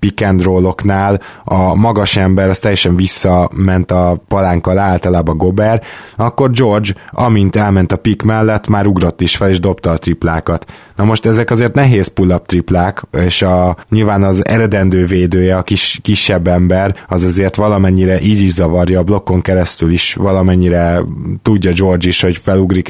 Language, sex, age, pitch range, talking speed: Hungarian, male, 20-39, 90-105 Hz, 150 wpm